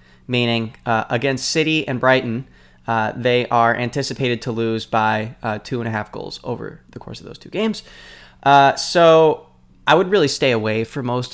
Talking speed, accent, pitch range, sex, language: 185 wpm, American, 110-140 Hz, male, English